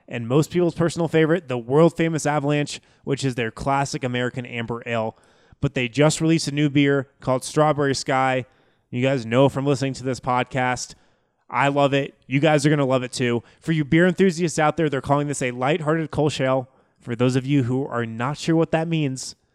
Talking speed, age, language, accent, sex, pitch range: 210 wpm, 20-39, English, American, male, 120-150 Hz